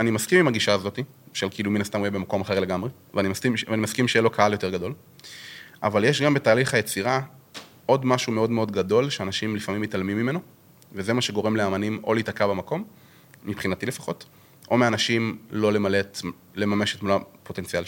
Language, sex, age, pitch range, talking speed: Hebrew, male, 30-49, 100-125 Hz, 180 wpm